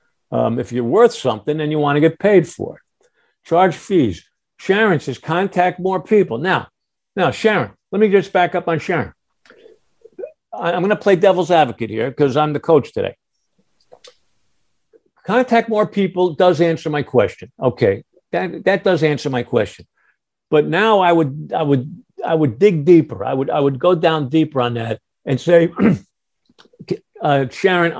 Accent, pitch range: American, 140-180 Hz